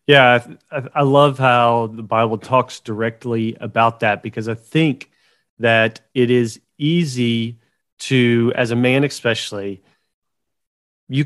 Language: English